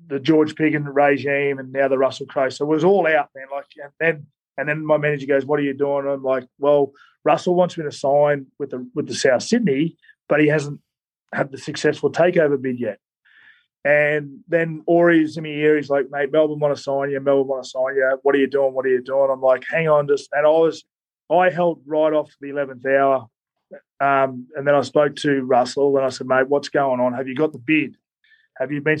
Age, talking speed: 30-49, 235 wpm